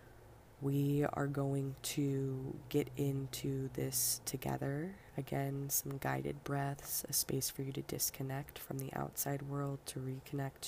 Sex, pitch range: female, 130-145 Hz